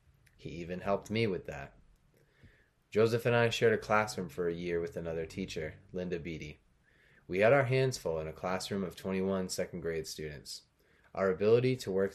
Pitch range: 85-100 Hz